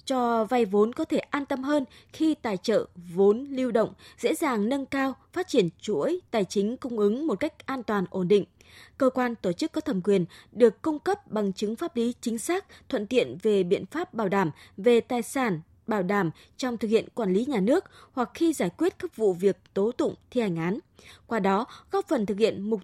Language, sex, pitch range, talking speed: Vietnamese, female, 200-275 Hz, 225 wpm